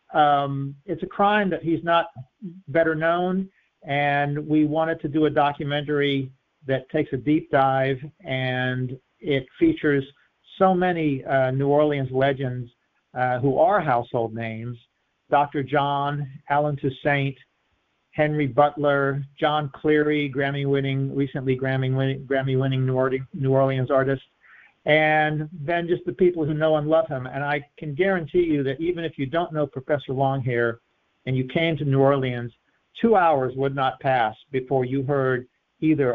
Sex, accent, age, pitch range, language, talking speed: male, American, 50-69, 130-155 Hz, English, 145 wpm